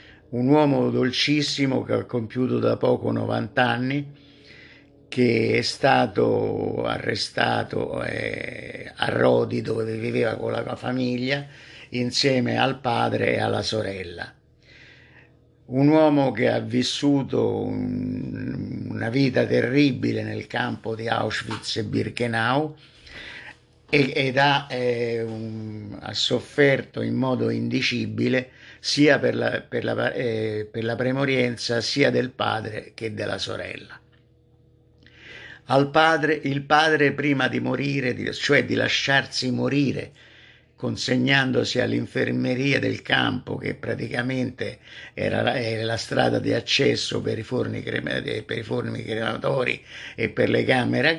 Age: 50-69